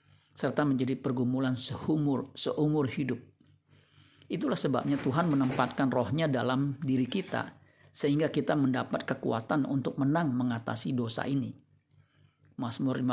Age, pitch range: 50-69, 125-140 Hz